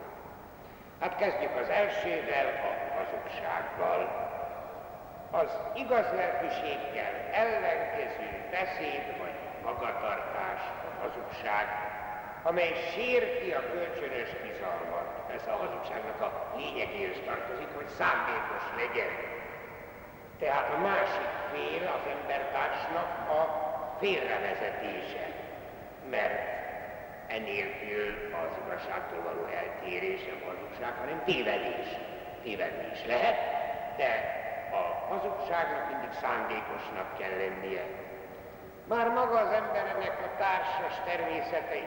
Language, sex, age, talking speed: Hungarian, male, 60-79, 90 wpm